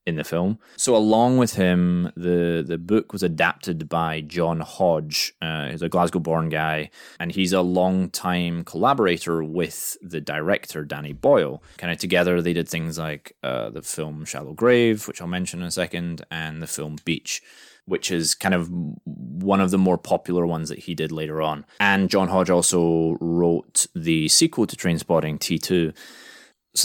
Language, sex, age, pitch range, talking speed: English, male, 20-39, 85-110 Hz, 175 wpm